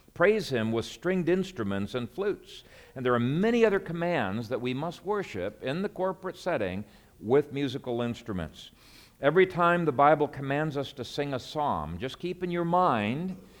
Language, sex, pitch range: English, male, 115-150 Hz